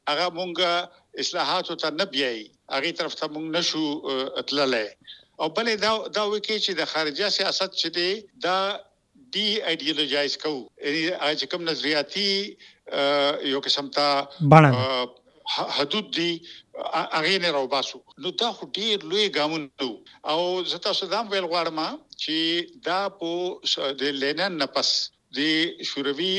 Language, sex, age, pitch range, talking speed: Urdu, male, 60-79, 140-190 Hz, 130 wpm